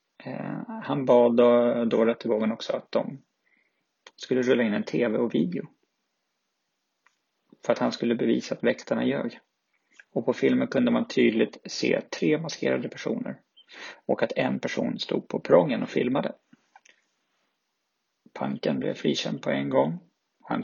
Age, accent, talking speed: 30-49, Swedish, 140 wpm